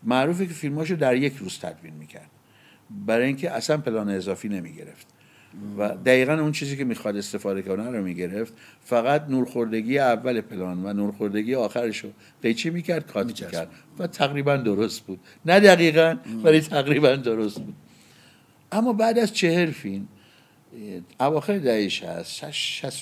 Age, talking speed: 60-79, 140 wpm